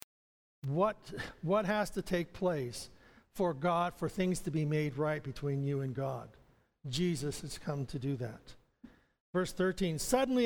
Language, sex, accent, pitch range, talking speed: English, male, American, 170-210 Hz, 155 wpm